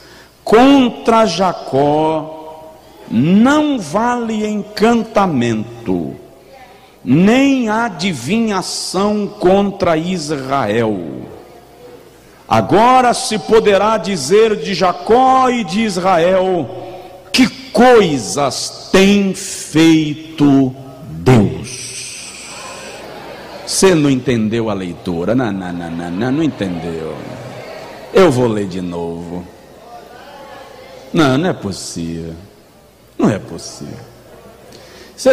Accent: Brazilian